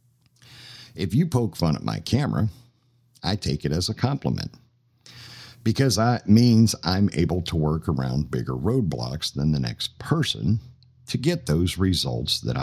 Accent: American